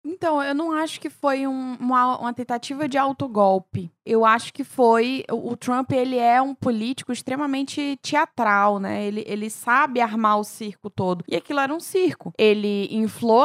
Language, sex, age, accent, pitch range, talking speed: Portuguese, female, 20-39, Brazilian, 225-295 Hz, 175 wpm